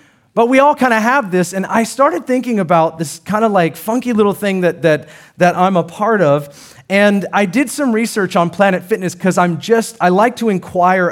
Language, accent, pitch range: English, American, 150-220 Hz